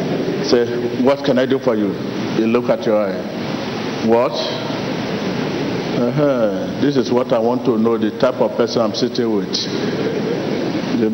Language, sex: English, male